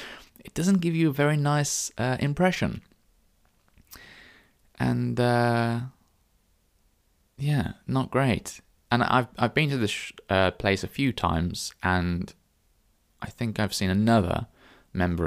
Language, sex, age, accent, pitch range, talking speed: English, male, 20-39, British, 85-115 Hz, 125 wpm